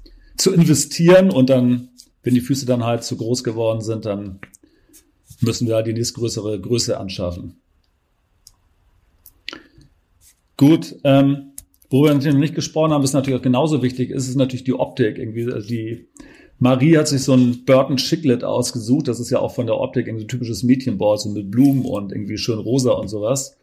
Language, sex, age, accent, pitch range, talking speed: German, male, 40-59, German, 105-130 Hz, 185 wpm